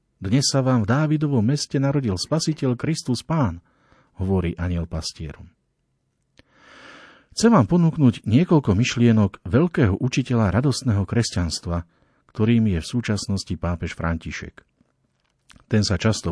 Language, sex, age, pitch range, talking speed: Slovak, male, 50-69, 90-130 Hz, 115 wpm